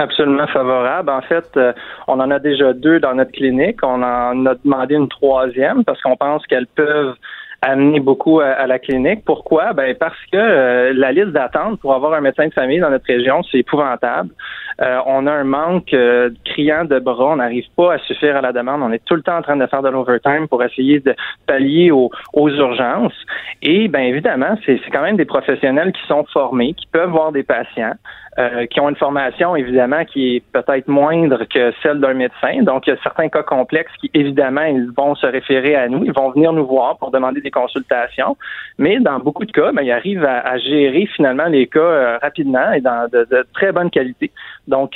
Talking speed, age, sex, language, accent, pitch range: 220 wpm, 20-39, male, French, Canadian, 130-155 Hz